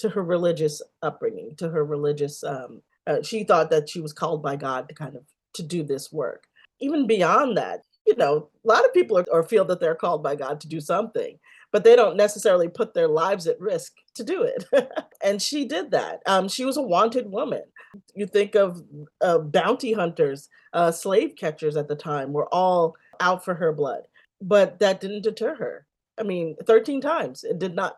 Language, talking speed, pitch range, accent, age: English, 205 wpm, 155-230 Hz, American, 30-49